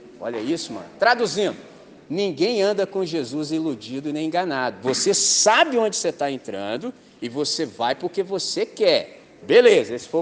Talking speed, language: 155 wpm, Portuguese